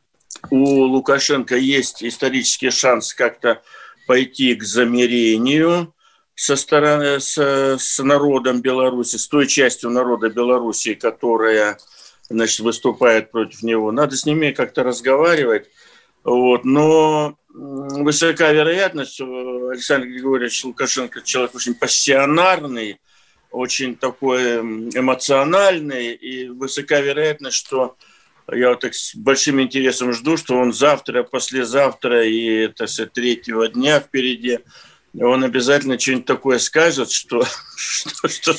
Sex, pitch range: male, 125-150 Hz